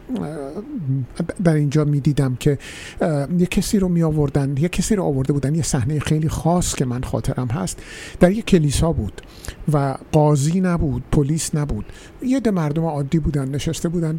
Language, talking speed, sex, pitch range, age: Persian, 165 wpm, male, 135-165 Hz, 50-69